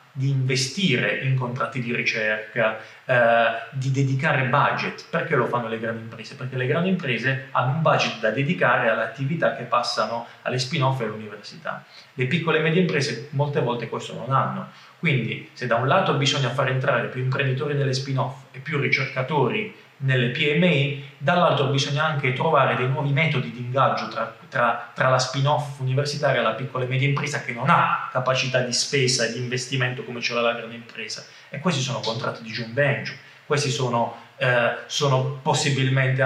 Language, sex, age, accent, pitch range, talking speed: Italian, male, 30-49, native, 125-145 Hz, 175 wpm